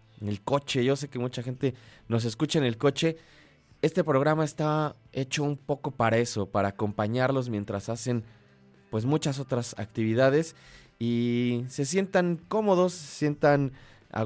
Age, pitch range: 20-39, 105-135 Hz